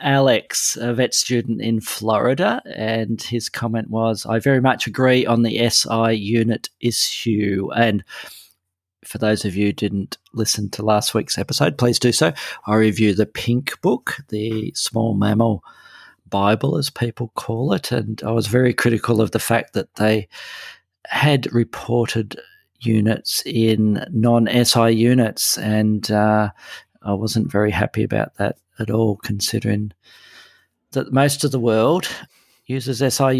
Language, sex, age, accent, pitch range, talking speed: English, male, 40-59, Australian, 105-120 Hz, 145 wpm